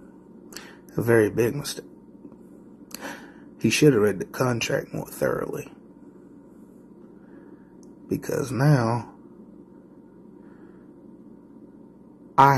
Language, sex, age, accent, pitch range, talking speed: English, male, 30-49, American, 120-140 Hz, 70 wpm